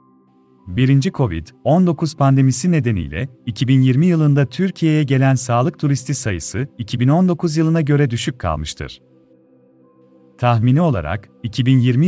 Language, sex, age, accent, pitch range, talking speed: Turkish, male, 40-59, native, 120-155 Hz, 95 wpm